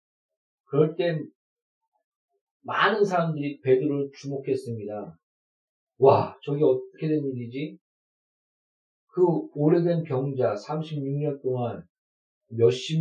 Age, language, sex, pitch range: 40-59, Korean, male, 130-165 Hz